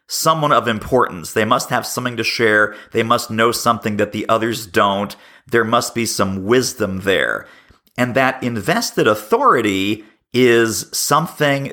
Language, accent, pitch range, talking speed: English, American, 115-145 Hz, 150 wpm